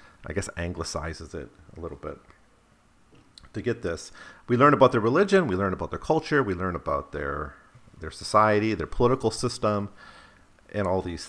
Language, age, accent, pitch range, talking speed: English, 40-59, American, 90-120 Hz, 170 wpm